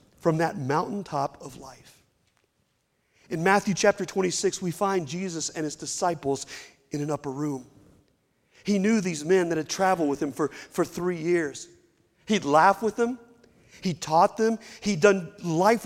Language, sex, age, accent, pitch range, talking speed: English, male, 40-59, American, 160-205 Hz, 160 wpm